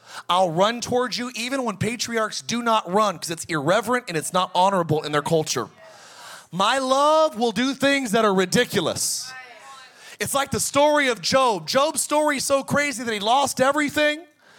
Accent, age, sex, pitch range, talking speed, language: American, 30-49, male, 190-275 Hz, 175 wpm, English